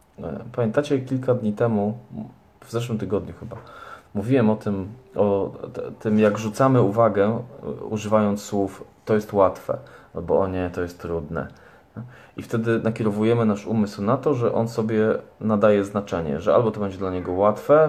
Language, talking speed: Polish, 155 wpm